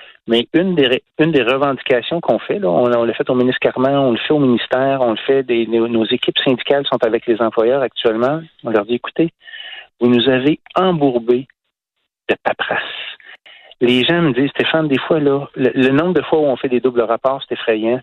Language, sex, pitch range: French, male, 120-145 Hz